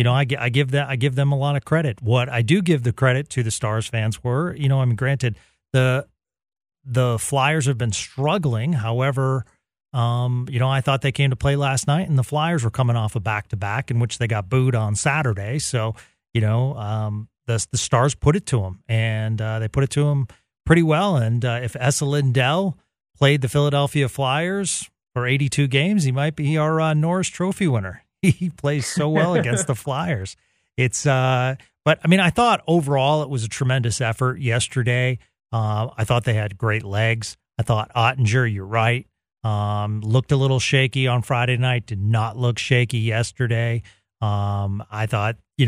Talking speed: 200 wpm